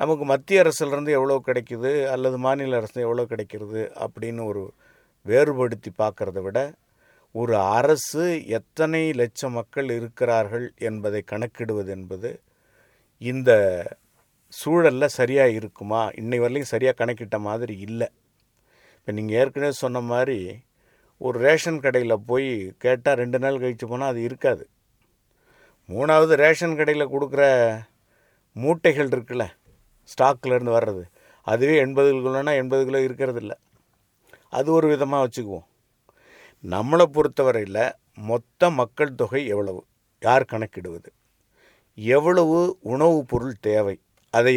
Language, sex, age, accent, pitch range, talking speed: Tamil, male, 50-69, native, 110-140 Hz, 115 wpm